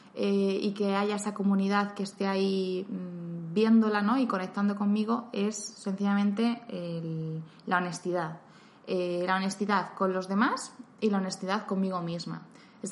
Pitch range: 185-225 Hz